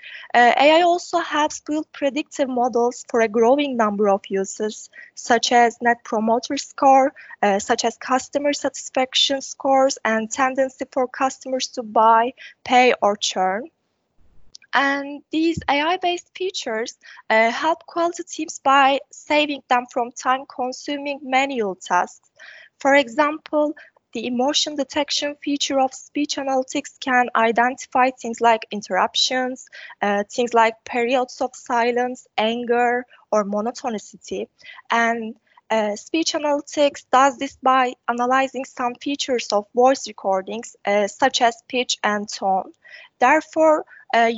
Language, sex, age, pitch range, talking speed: English, female, 20-39, 235-285 Hz, 125 wpm